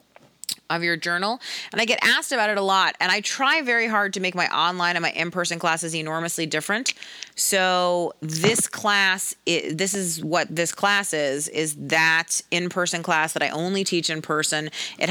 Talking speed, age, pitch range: 185 wpm, 30-49, 160-195 Hz